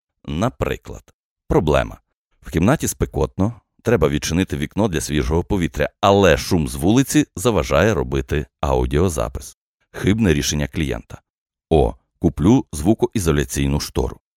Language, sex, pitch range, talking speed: Ukrainian, male, 70-90 Hz, 105 wpm